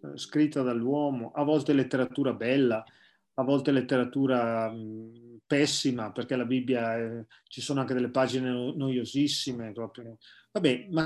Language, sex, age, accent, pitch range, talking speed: Italian, male, 30-49, native, 120-150 Hz, 130 wpm